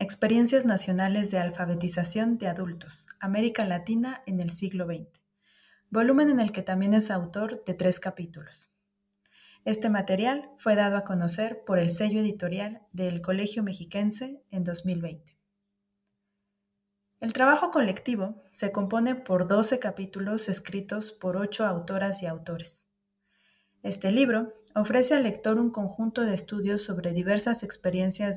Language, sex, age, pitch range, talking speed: Spanish, female, 30-49, 185-215 Hz, 135 wpm